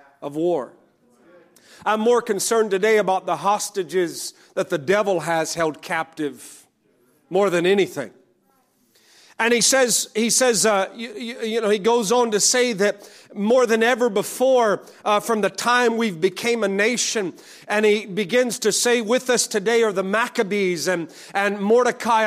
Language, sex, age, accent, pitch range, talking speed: English, male, 40-59, American, 205-250 Hz, 160 wpm